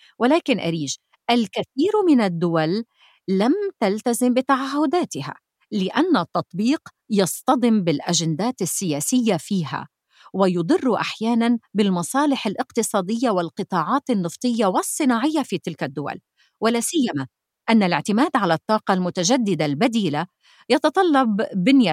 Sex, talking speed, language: female, 90 wpm, Arabic